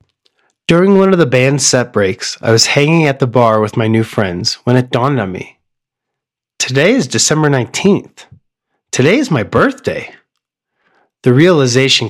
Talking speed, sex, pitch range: 160 wpm, male, 115-145 Hz